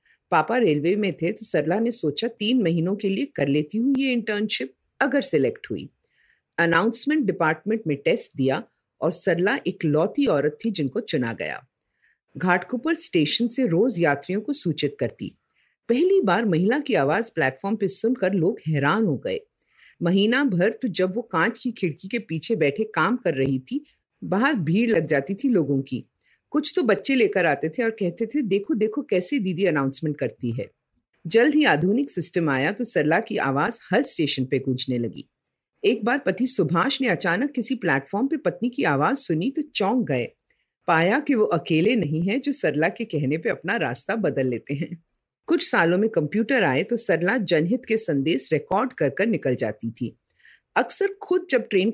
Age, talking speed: 50-69, 155 wpm